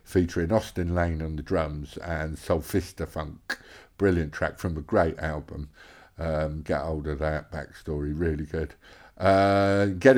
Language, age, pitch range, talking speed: English, 50-69, 80-100 Hz, 145 wpm